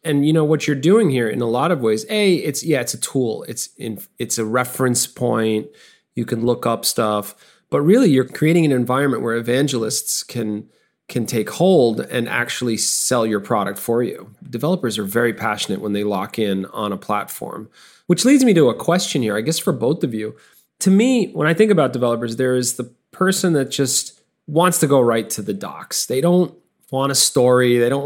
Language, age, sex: English, 30-49, male